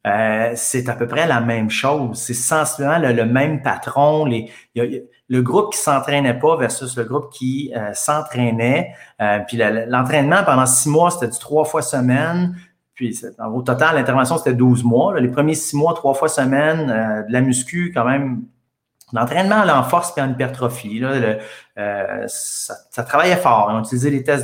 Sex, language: male, French